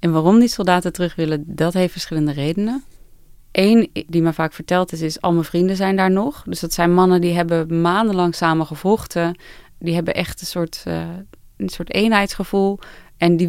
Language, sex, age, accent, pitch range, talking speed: Dutch, female, 30-49, Dutch, 160-185 Hz, 185 wpm